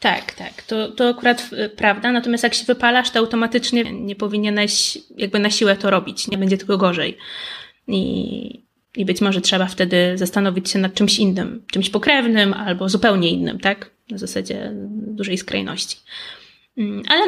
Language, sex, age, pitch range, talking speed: Polish, female, 20-39, 200-245 Hz, 155 wpm